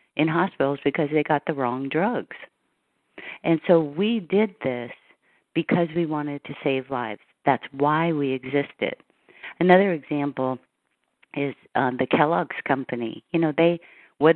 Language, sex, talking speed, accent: English, female, 140 wpm, American